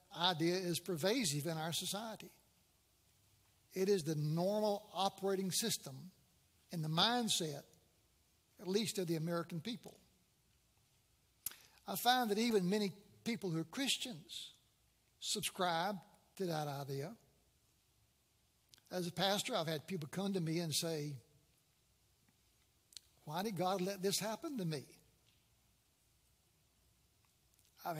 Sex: male